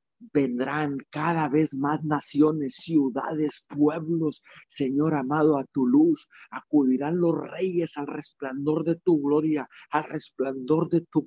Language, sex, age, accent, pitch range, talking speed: Spanish, male, 50-69, Mexican, 130-155 Hz, 130 wpm